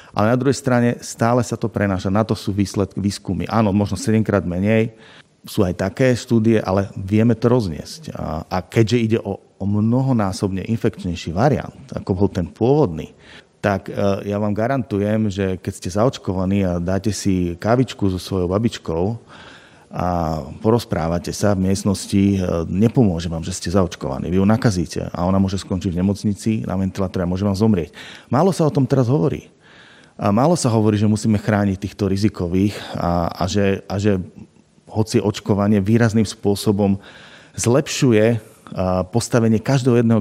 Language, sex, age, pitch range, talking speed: Slovak, male, 30-49, 95-110 Hz, 155 wpm